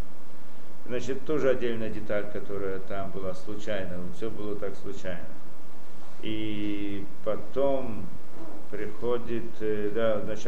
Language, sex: Russian, male